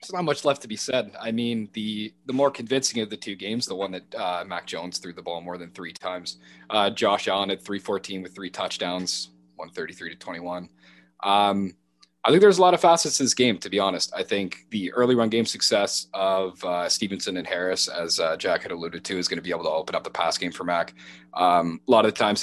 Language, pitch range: English, 85-110 Hz